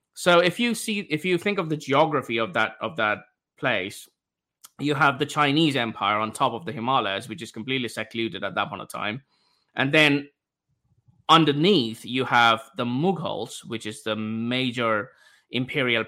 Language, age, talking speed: English, 20-39, 170 wpm